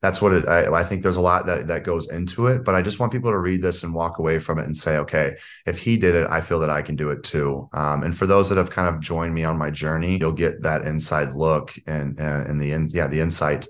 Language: English